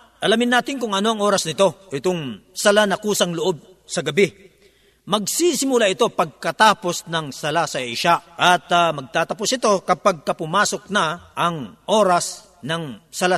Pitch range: 170-215 Hz